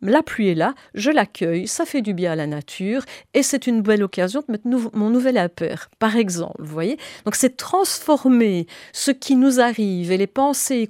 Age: 40-59